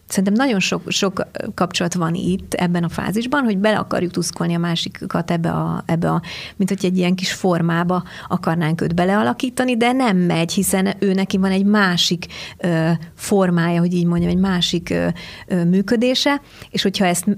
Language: Hungarian